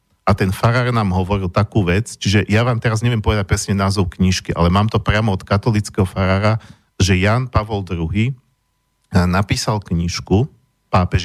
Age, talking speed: 50-69, 160 wpm